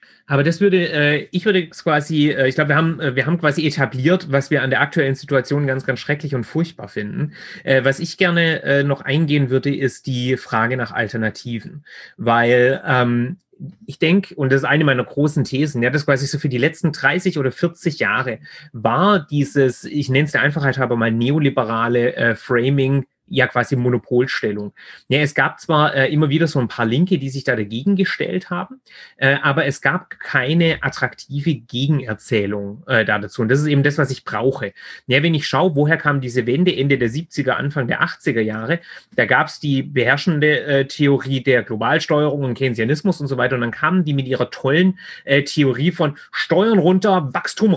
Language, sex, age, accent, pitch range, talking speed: German, male, 30-49, German, 130-160 Hz, 185 wpm